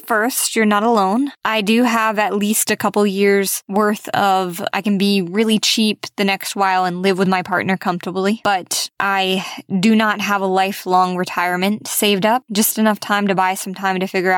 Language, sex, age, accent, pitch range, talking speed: English, female, 20-39, American, 195-235 Hz, 195 wpm